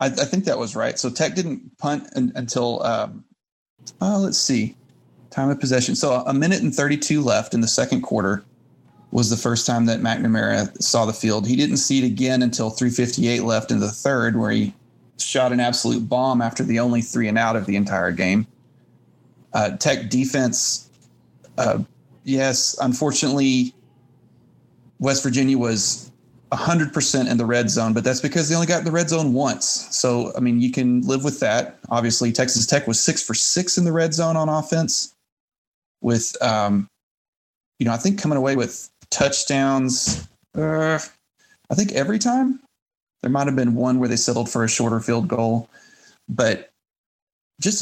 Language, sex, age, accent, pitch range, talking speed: English, male, 30-49, American, 115-140 Hz, 175 wpm